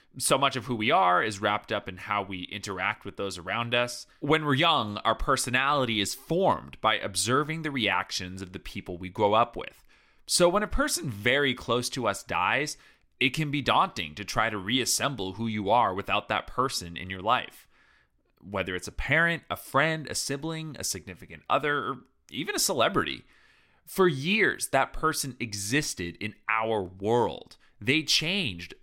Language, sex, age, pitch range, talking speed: English, male, 30-49, 100-140 Hz, 175 wpm